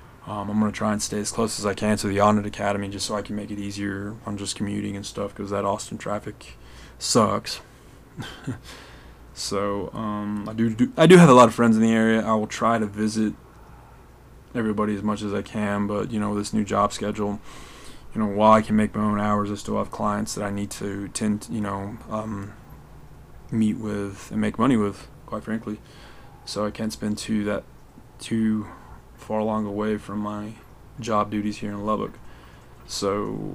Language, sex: English, male